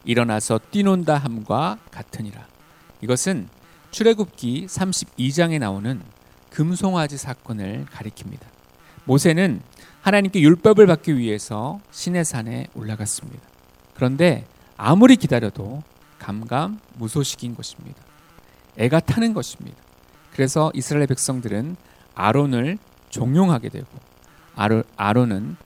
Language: Korean